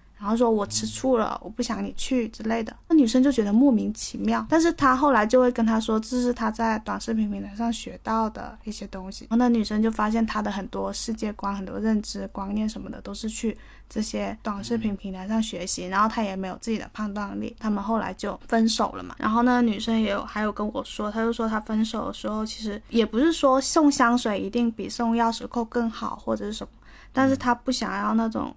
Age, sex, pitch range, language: 20-39, female, 210-240 Hz, Chinese